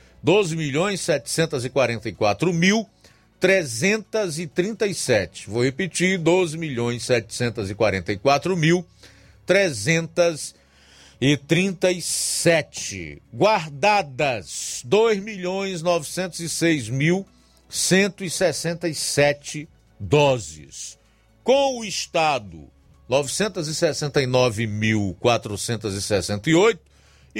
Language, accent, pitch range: Portuguese, Brazilian, 100-165 Hz